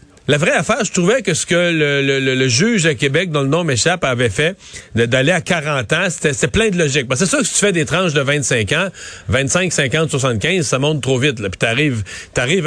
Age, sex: 40-59, male